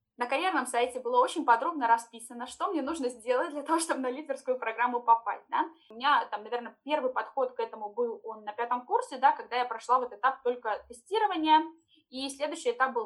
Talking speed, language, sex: 200 wpm, Russian, female